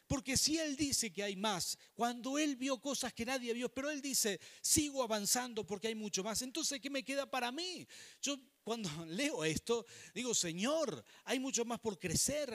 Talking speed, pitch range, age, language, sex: 190 wpm, 165-235 Hz, 40-59, Spanish, male